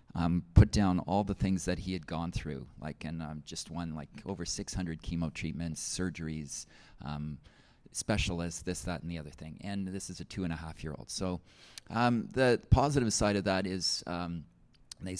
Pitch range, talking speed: 85-100 Hz, 195 wpm